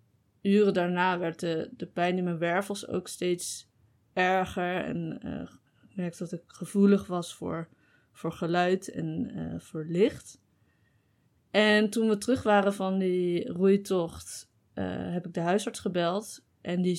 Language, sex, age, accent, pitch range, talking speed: Dutch, female, 20-39, Dutch, 165-200 Hz, 150 wpm